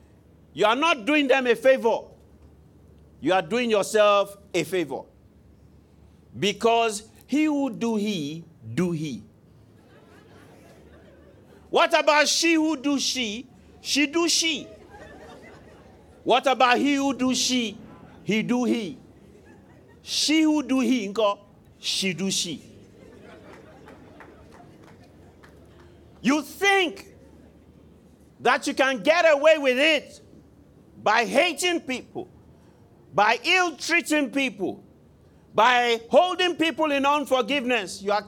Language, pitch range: English, 190-285 Hz